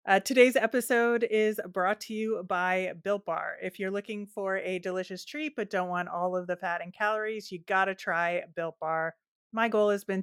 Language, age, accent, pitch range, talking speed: English, 30-49, American, 175-215 Hz, 205 wpm